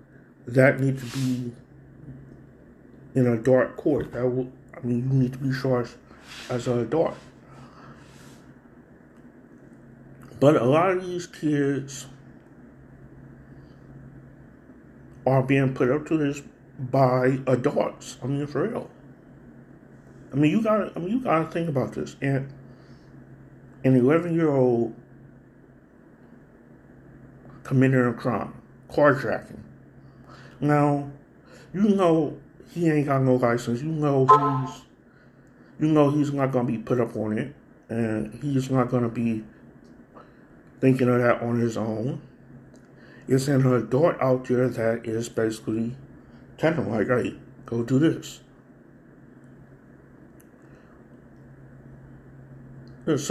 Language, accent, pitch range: English, American, 125-140 Hz